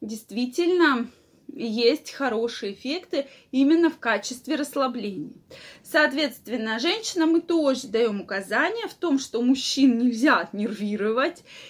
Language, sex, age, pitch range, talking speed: Russian, female, 20-39, 220-290 Hz, 105 wpm